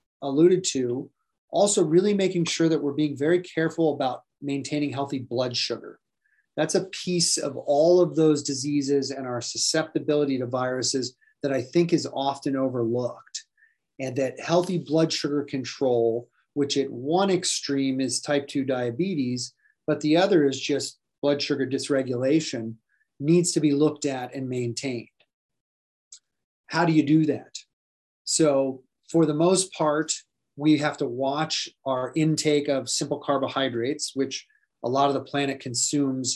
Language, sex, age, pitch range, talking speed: English, male, 30-49, 130-160 Hz, 150 wpm